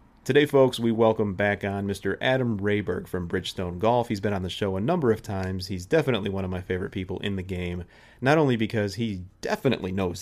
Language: English